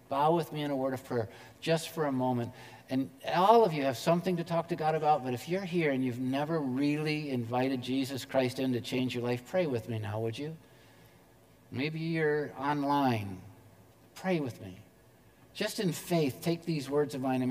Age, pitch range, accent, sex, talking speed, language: 50-69, 115-145 Hz, American, male, 205 wpm, English